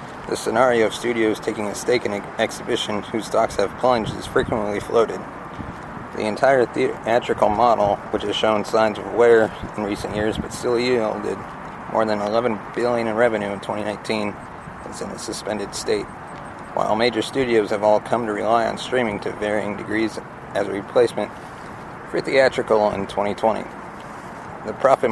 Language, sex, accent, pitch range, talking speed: English, male, American, 105-110 Hz, 160 wpm